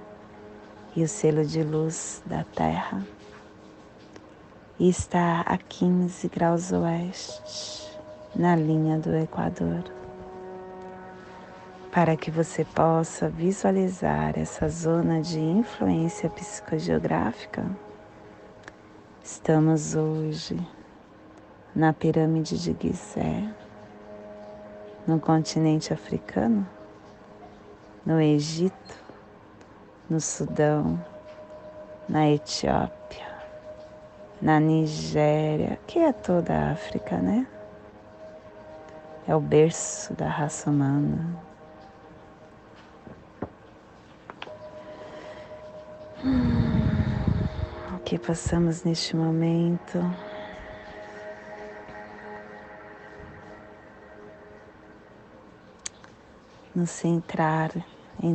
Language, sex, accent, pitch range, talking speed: Portuguese, female, Brazilian, 105-165 Hz, 65 wpm